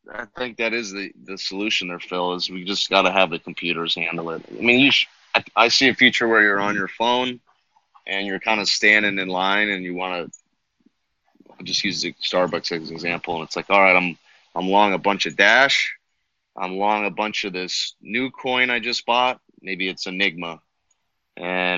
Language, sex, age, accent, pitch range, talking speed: English, male, 30-49, American, 90-110 Hz, 220 wpm